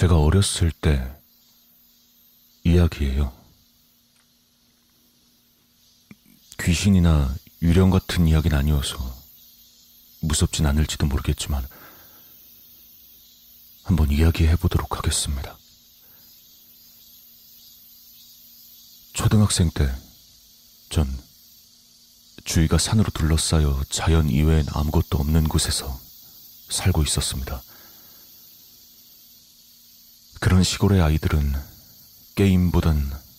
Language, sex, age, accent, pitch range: Korean, male, 40-59, native, 75-85 Hz